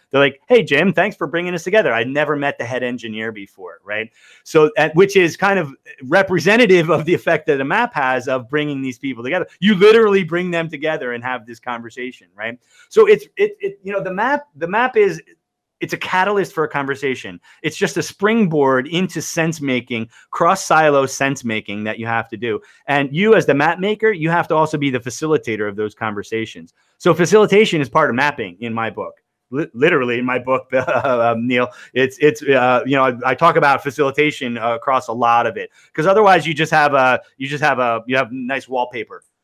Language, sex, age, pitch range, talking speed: English, male, 30-49, 125-170 Hz, 205 wpm